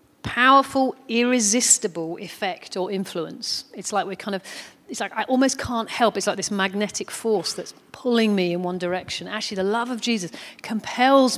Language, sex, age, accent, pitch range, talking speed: English, female, 40-59, British, 185-230 Hz, 175 wpm